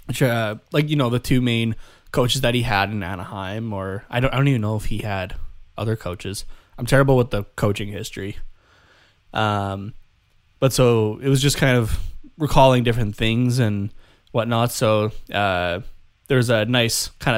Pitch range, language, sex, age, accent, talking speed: 100-125 Hz, English, male, 20-39, American, 175 wpm